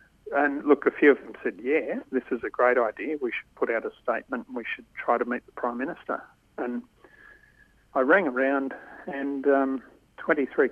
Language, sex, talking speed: English, male, 190 wpm